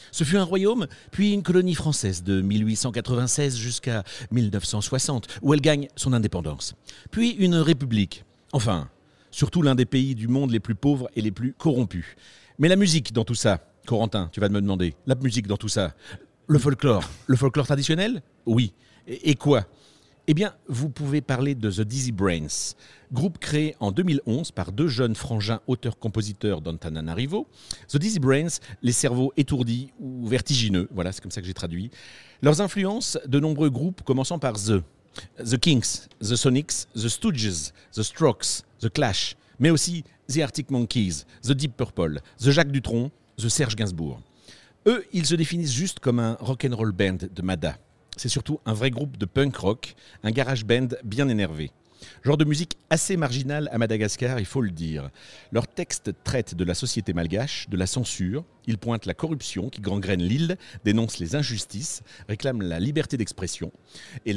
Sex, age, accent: male, 50-69, French